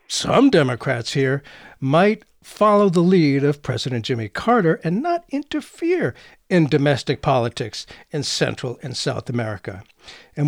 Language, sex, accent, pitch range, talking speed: English, male, American, 130-185 Hz, 130 wpm